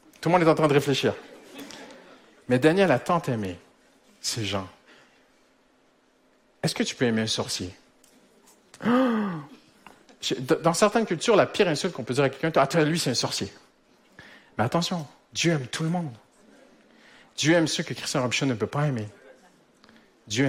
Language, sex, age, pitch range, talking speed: French, male, 50-69, 115-160 Hz, 165 wpm